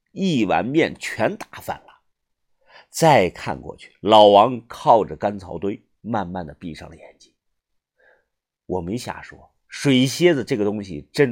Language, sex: Chinese, male